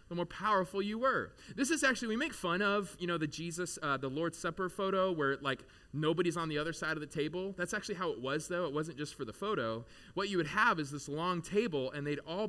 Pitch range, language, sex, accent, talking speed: 135-185 Hz, English, male, American, 260 wpm